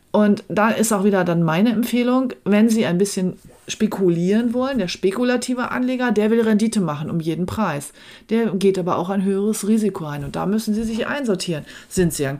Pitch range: 170-215 Hz